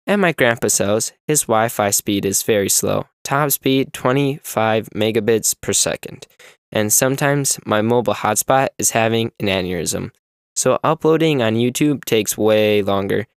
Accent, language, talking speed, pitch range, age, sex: American, English, 145 wpm, 105-135 Hz, 10-29, male